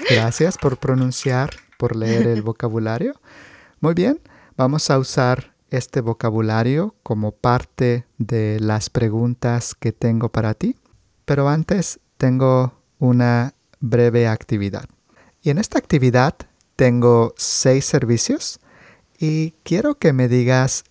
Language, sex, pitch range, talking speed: English, male, 115-140 Hz, 120 wpm